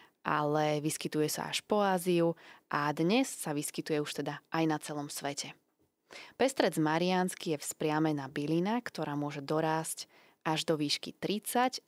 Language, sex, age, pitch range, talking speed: Slovak, female, 20-39, 150-190 Hz, 140 wpm